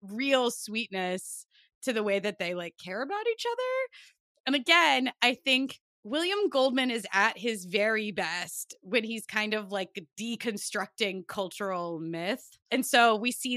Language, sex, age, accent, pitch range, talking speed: English, female, 20-39, American, 200-260 Hz, 155 wpm